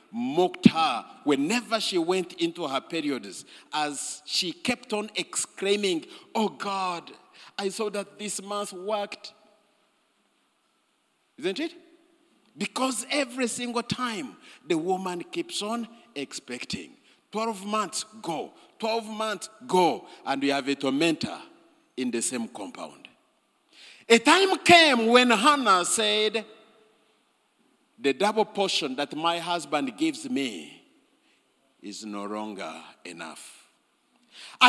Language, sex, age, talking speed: English, male, 50-69, 110 wpm